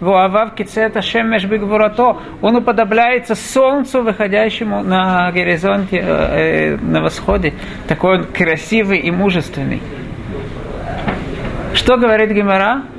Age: 50-69